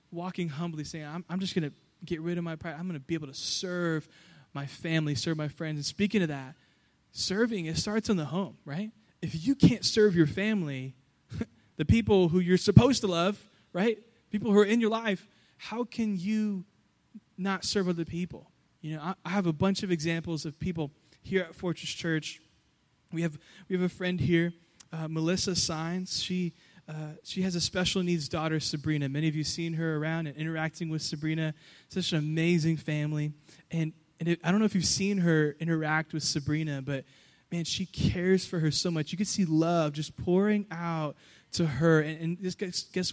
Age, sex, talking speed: 20-39, male, 205 wpm